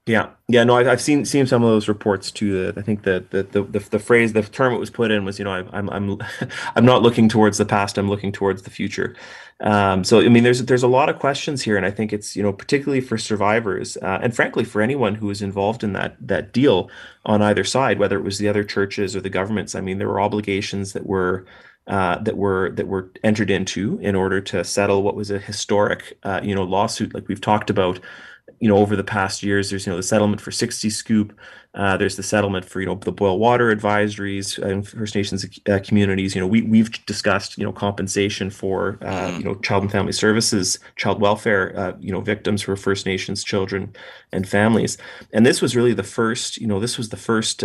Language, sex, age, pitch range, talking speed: English, male, 30-49, 95-110 Hz, 235 wpm